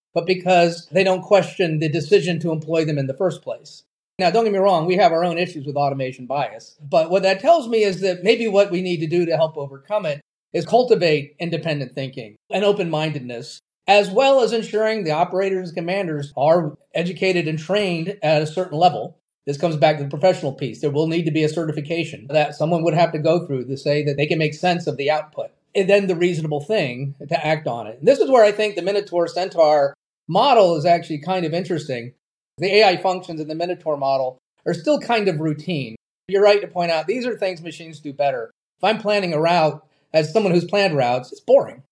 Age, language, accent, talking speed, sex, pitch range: 30-49, English, American, 225 wpm, male, 150-190 Hz